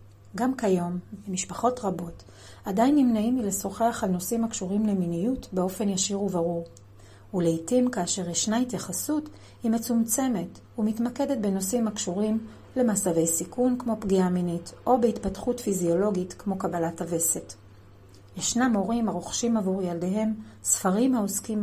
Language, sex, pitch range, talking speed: Hebrew, female, 170-225 Hz, 115 wpm